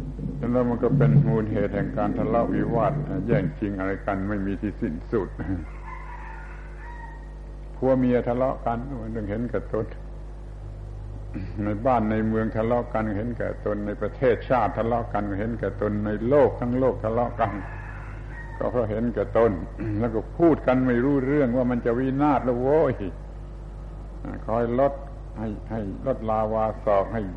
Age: 70-89